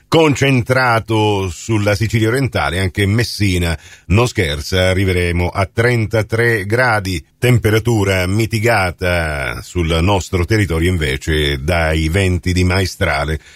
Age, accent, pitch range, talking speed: 40-59, native, 90-115 Hz, 95 wpm